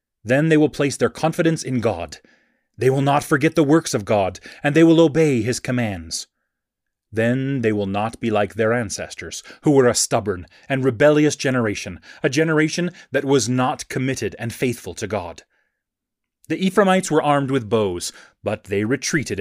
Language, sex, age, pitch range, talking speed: English, male, 30-49, 115-155 Hz, 175 wpm